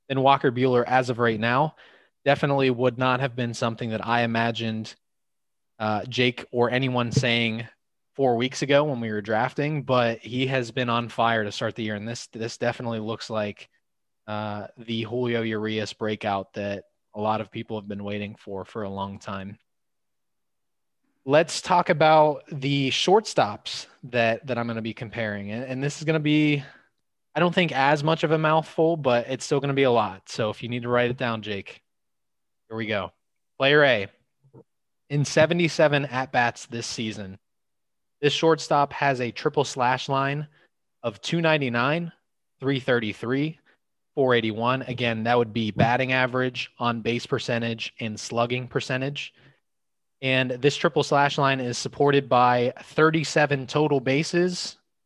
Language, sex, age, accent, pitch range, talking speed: English, male, 20-39, American, 115-140 Hz, 165 wpm